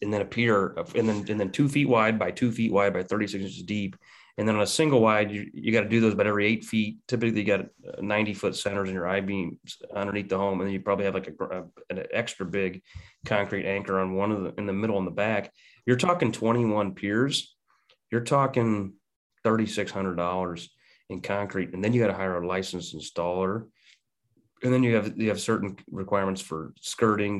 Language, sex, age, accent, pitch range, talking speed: English, male, 30-49, American, 95-115 Hz, 230 wpm